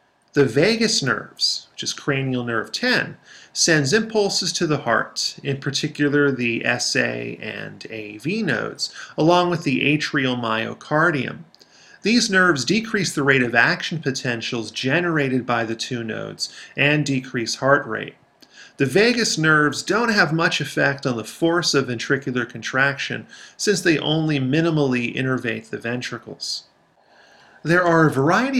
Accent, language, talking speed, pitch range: American, English, 140 wpm, 125-165 Hz